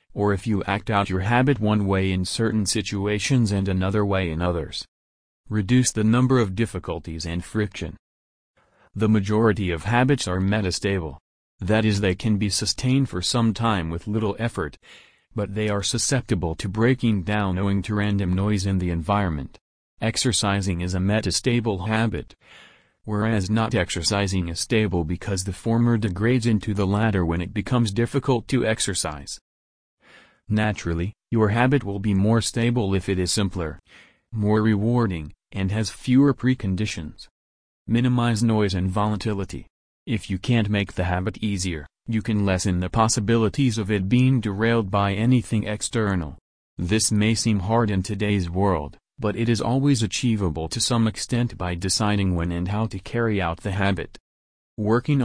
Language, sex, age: English, male, 40-59